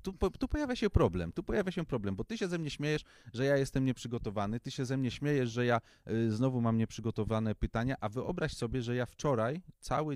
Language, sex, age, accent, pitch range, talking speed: Polish, male, 30-49, native, 100-125 Hz, 220 wpm